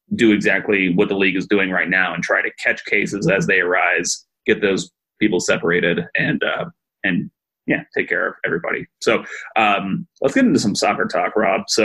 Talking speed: 195 wpm